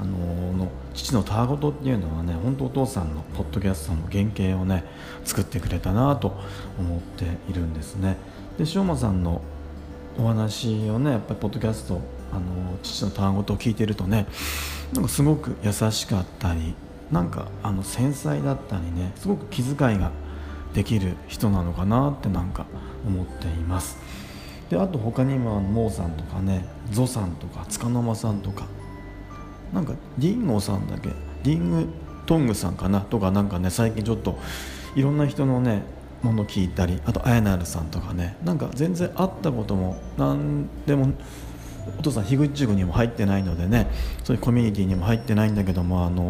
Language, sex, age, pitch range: Japanese, male, 40-59, 90-115 Hz